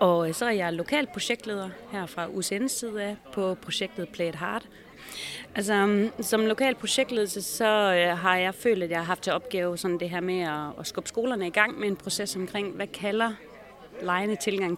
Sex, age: female, 30-49